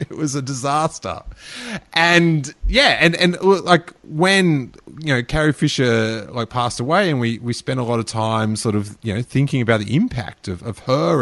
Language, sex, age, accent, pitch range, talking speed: English, male, 30-49, Australian, 110-140 Hz, 195 wpm